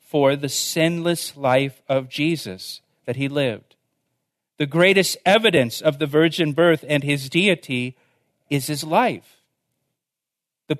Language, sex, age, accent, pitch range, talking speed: English, male, 50-69, American, 140-180 Hz, 120 wpm